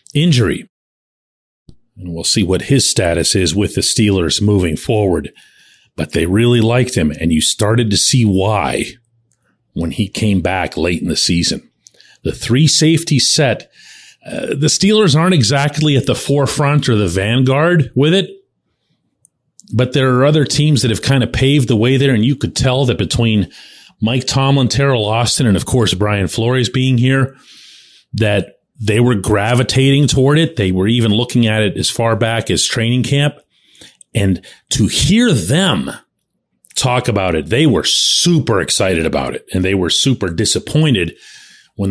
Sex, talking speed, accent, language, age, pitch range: male, 165 wpm, American, English, 40-59, 100-135 Hz